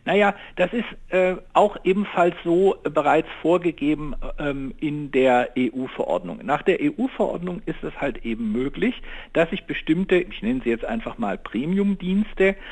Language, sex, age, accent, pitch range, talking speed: German, male, 60-79, German, 145-205 Hz, 145 wpm